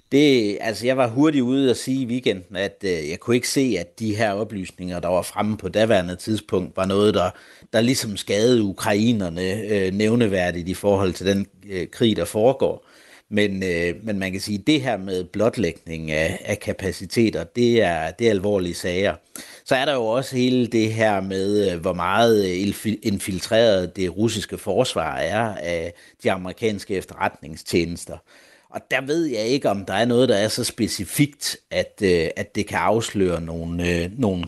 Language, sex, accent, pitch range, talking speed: Danish, male, native, 90-110 Hz, 170 wpm